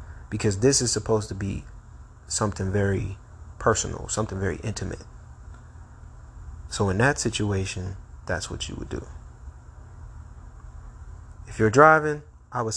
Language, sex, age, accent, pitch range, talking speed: English, male, 30-49, American, 85-115 Hz, 120 wpm